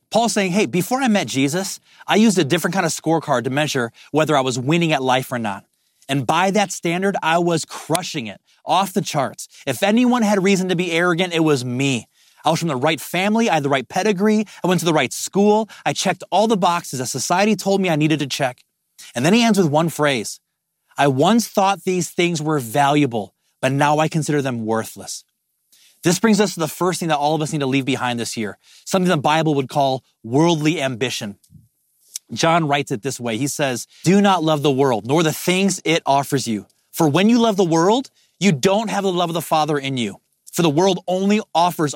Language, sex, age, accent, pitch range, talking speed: English, male, 30-49, American, 140-185 Hz, 225 wpm